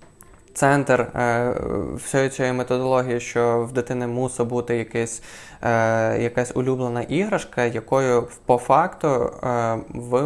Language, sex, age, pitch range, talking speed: Ukrainian, male, 20-39, 120-145 Hz, 95 wpm